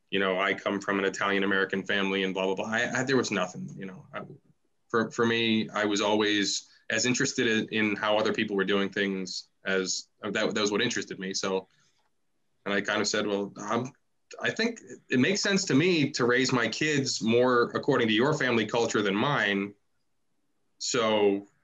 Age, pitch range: 20-39, 100-130 Hz